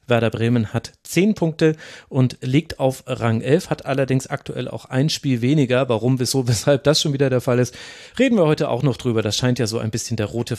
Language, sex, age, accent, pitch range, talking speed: German, male, 30-49, German, 125-160 Hz, 225 wpm